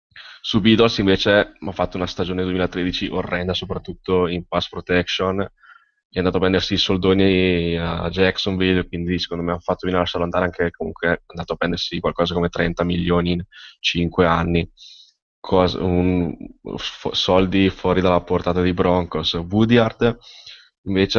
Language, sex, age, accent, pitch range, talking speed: Italian, male, 10-29, native, 90-100 Hz, 155 wpm